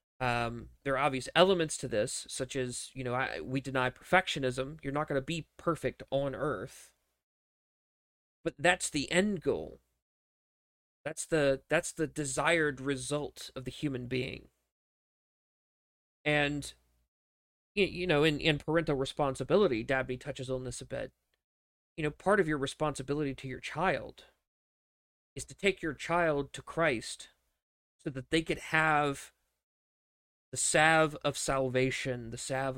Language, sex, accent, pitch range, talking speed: English, male, American, 125-150 Hz, 140 wpm